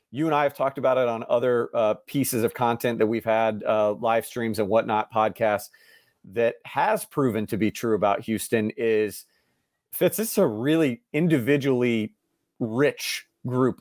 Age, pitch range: 40-59, 110-150 Hz